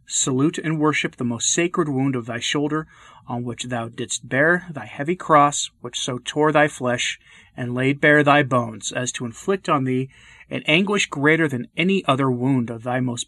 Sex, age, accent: male, 30-49, American